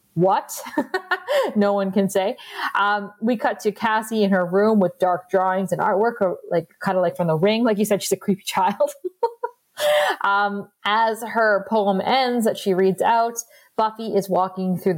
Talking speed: 185 wpm